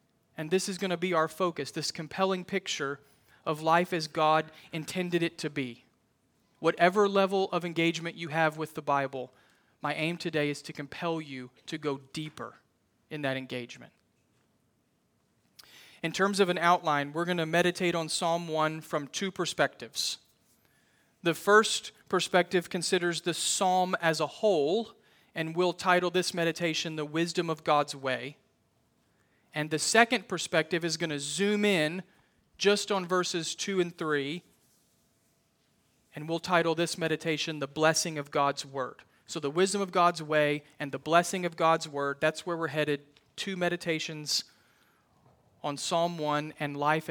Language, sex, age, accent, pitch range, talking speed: English, male, 40-59, American, 145-175 Hz, 155 wpm